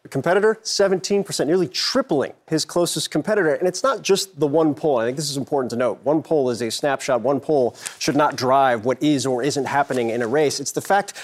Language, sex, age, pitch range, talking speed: English, male, 30-49, 140-180 Hz, 230 wpm